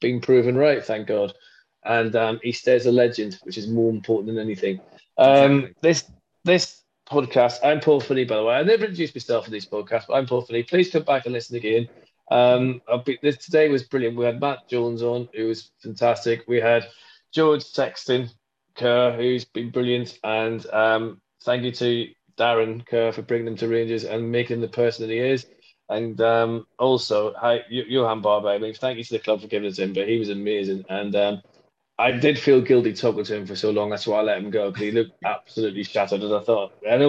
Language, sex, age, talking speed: English, male, 20-39, 220 wpm